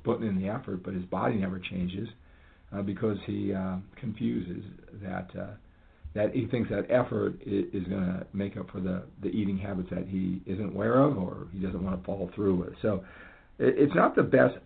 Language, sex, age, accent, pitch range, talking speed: English, male, 50-69, American, 90-105 Hz, 200 wpm